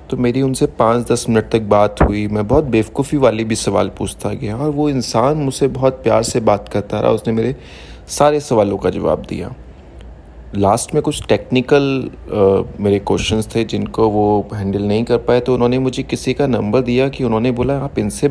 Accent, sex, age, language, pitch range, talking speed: native, male, 30-49, Hindi, 100-125 Hz, 195 wpm